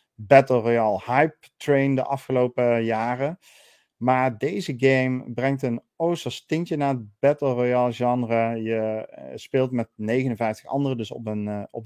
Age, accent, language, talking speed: 40-59, Dutch, Dutch, 135 wpm